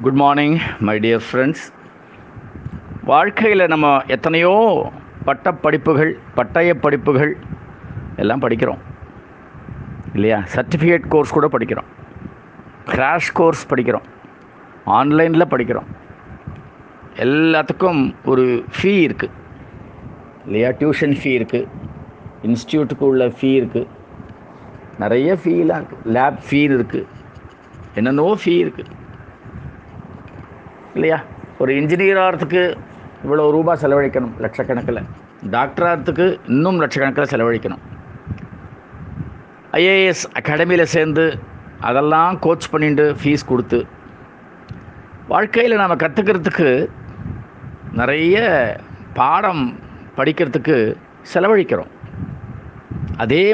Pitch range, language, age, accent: 125-170 Hz, Tamil, 50-69, native